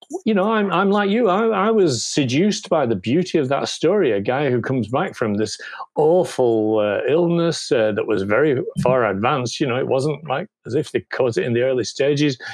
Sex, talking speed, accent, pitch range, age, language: male, 220 wpm, British, 115-165 Hz, 40-59, English